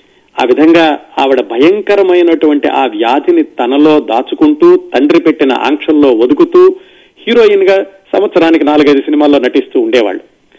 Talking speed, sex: 110 wpm, male